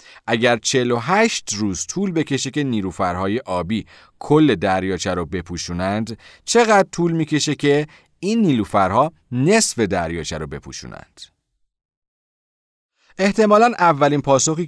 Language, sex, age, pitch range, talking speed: Persian, male, 40-59, 95-150 Hz, 100 wpm